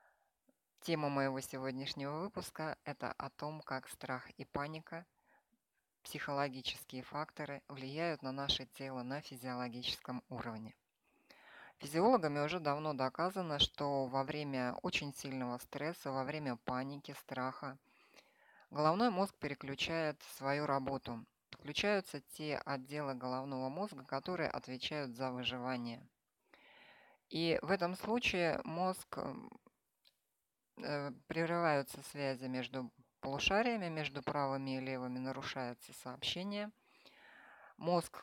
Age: 20-39